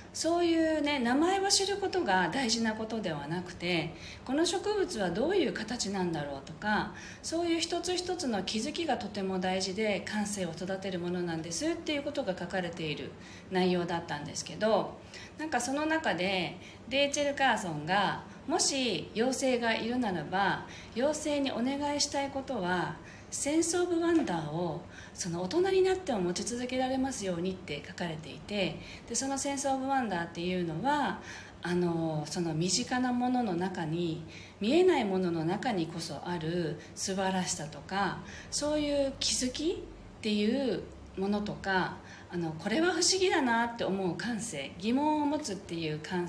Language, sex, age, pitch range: Japanese, female, 40-59, 175-280 Hz